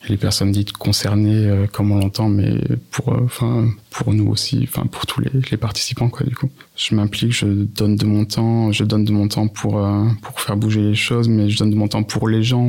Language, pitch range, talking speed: French, 105-120 Hz, 245 wpm